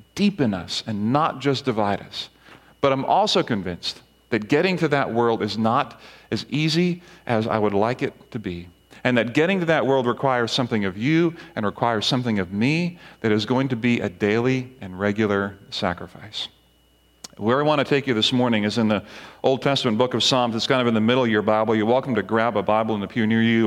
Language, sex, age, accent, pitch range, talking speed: English, male, 40-59, American, 105-130 Hz, 220 wpm